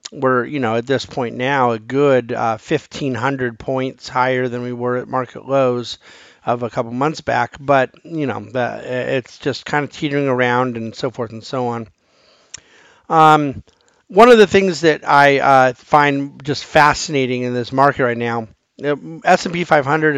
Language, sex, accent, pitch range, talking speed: English, male, American, 125-145 Hz, 170 wpm